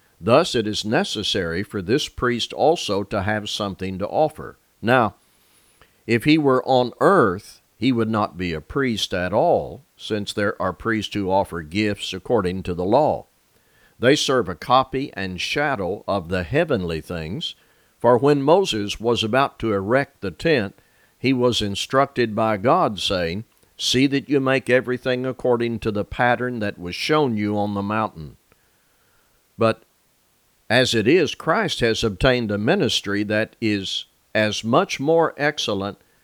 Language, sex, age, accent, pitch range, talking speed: English, male, 50-69, American, 100-125 Hz, 155 wpm